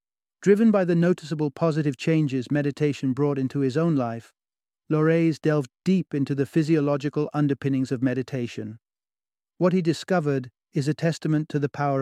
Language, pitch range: English, 130-155 Hz